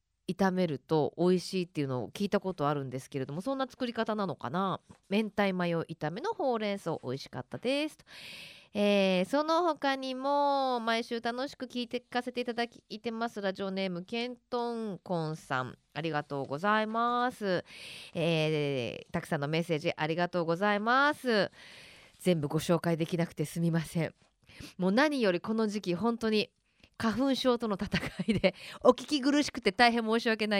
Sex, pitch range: female, 170-245 Hz